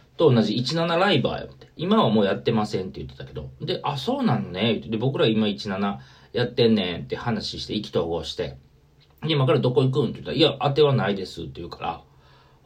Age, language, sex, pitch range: 40-59, Japanese, male, 95-155 Hz